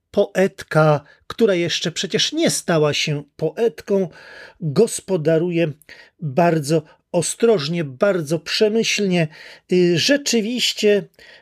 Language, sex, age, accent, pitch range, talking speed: Polish, male, 40-59, native, 160-220 Hz, 75 wpm